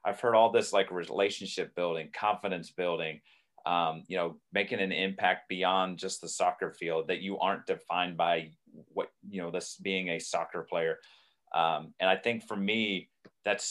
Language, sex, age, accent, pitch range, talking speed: English, male, 30-49, American, 85-105 Hz, 175 wpm